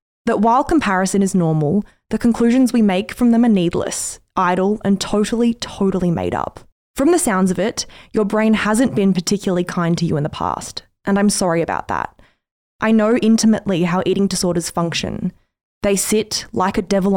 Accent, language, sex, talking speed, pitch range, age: Australian, English, female, 180 wpm, 185-220 Hz, 20-39